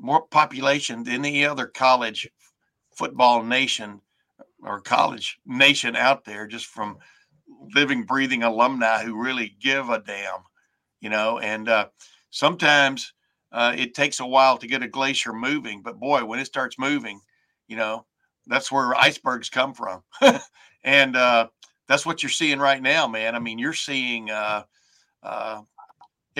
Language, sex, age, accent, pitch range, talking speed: English, male, 60-79, American, 115-135 Hz, 150 wpm